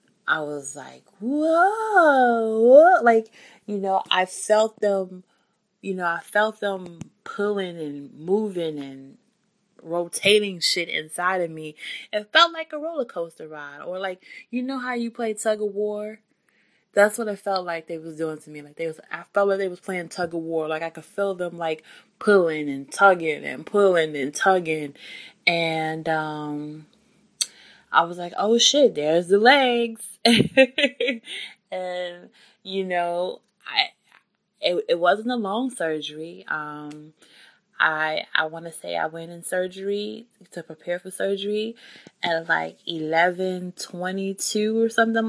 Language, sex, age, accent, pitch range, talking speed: English, female, 20-39, American, 165-220 Hz, 155 wpm